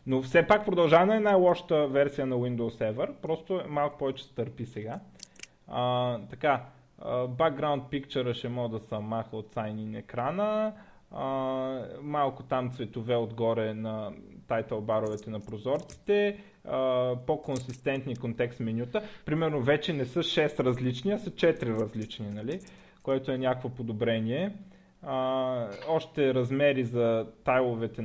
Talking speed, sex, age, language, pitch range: 130 wpm, male, 20-39, Bulgarian, 120-155 Hz